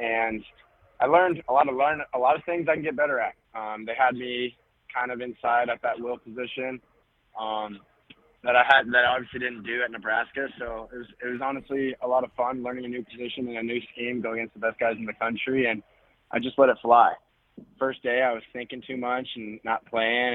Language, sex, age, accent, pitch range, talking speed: English, male, 20-39, American, 110-130 Hz, 235 wpm